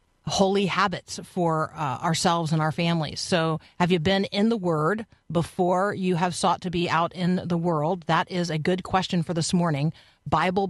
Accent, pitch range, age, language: American, 170-205 Hz, 40-59, English